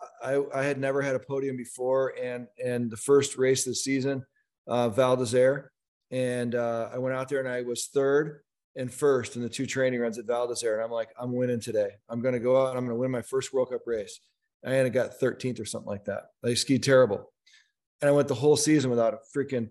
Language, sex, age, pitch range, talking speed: English, male, 40-59, 120-140 Hz, 245 wpm